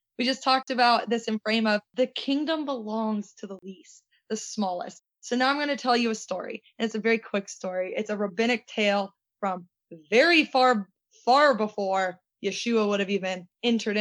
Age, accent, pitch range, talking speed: 20-39, American, 190-230 Hz, 195 wpm